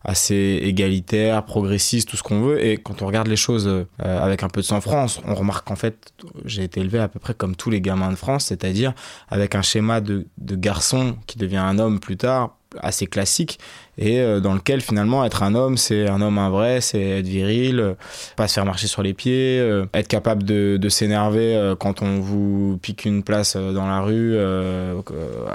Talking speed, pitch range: 210 wpm, 100-115 Hz